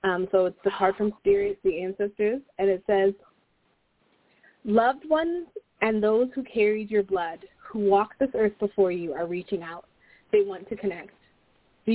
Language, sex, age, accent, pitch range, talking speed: English, female, 30-49, American, 180-220 Hz, 170 wpm